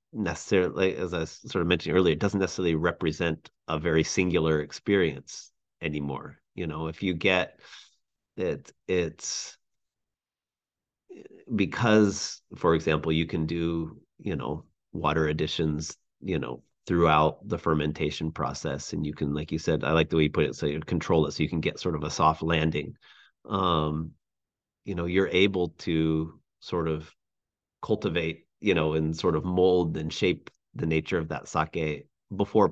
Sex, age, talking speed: male, 30-49, 160 wpm